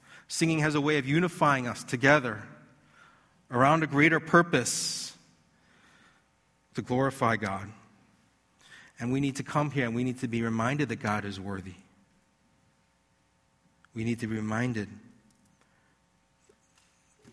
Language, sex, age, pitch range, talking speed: English, male, 40-59, 125-165 Hz, 130 wpm